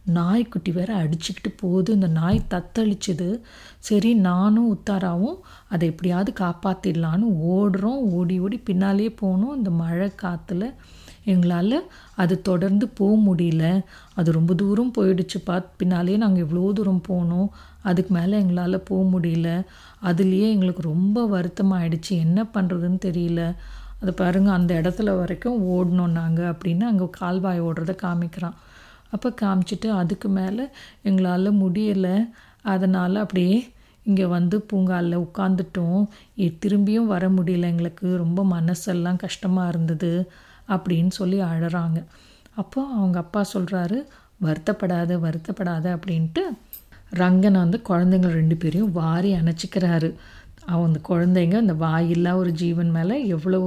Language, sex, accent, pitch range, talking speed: Tamil, female, native, 175-200 Hz, 115 wpm